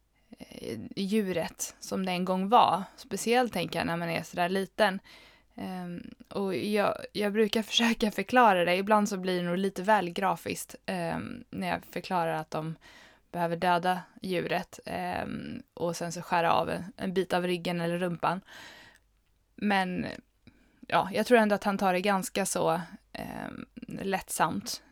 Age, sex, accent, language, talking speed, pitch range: 20-39, female, Swedish, English, 145 wpm, 175-225 Hz